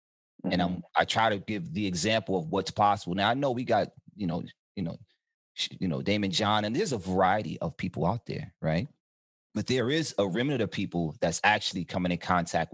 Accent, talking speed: American, 205 wpm